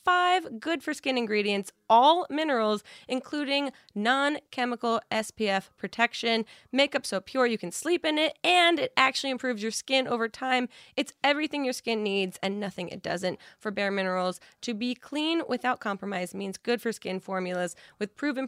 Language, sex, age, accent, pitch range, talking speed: English, female, 10-29, American, 210-295 Hz, 155 wpm